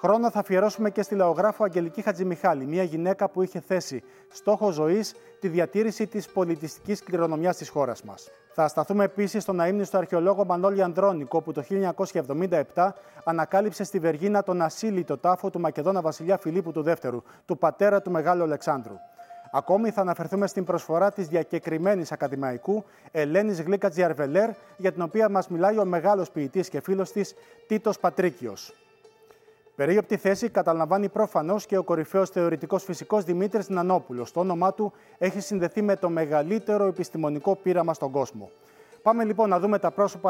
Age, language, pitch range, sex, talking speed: 30-49, Greek, 165-205 Hz, male, 150 wpm